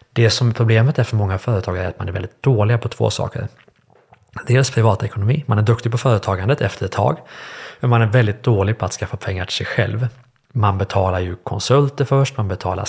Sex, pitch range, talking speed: male, 100-120 Hz, 220 wpm